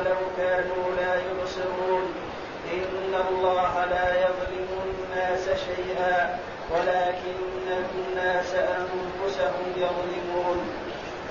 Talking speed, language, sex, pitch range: 75 wpm, Arabic, male, 180-190 Hz